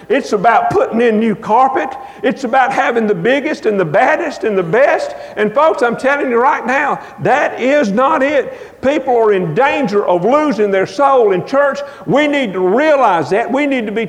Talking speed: 200 wpm